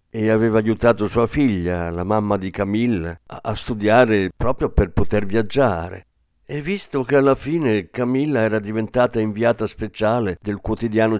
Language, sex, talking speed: Italian, male, 145 wpm